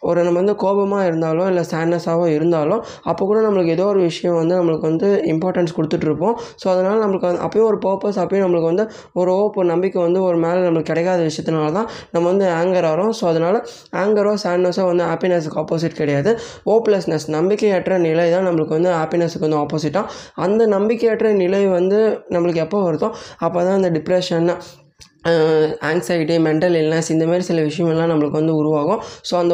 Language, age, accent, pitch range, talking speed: Tamil, 20-39, native, 160-190 Hz, 170 wpm